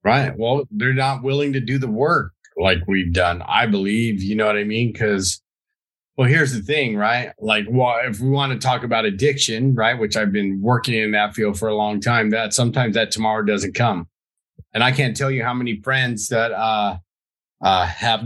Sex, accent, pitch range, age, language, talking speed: male, American, 105-135 Hz, 30-49, English, 210 wpm